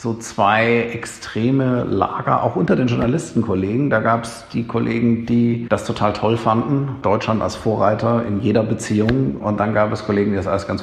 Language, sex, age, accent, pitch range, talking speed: German, male, 50-69, German, 105-120 Hz, 185 wpm